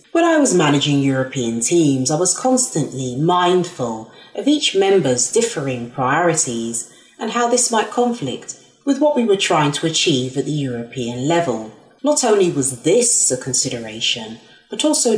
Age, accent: 40-59, British